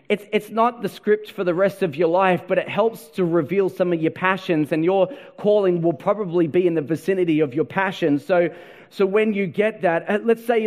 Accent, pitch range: Australian, 195-260 Hz